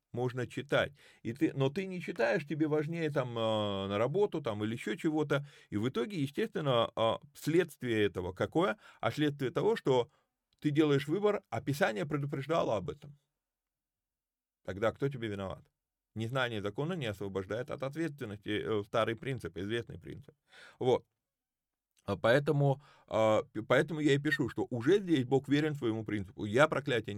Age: 30-49